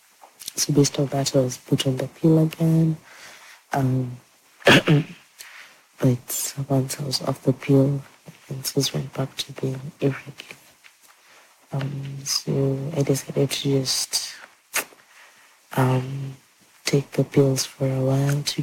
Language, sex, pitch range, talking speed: English, female, 135-150 Hz, 125 wpm